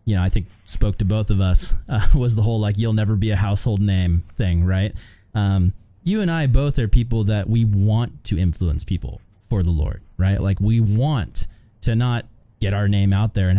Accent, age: American, 20-39